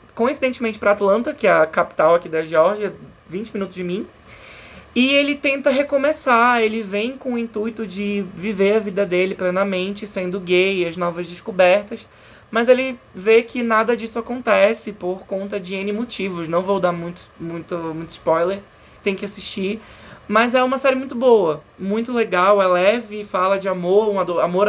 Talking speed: 175 wpm